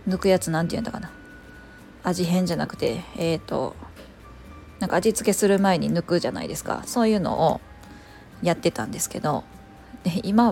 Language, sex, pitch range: Japanese, female, 155-215 Hz